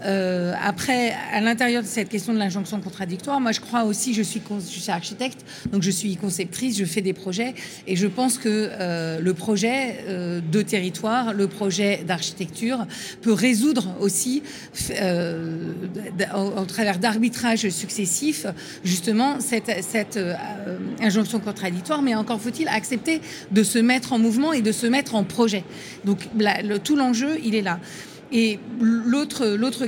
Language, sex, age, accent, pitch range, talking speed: French, female, 50-69, French, 195-245 Hz, 155 wpm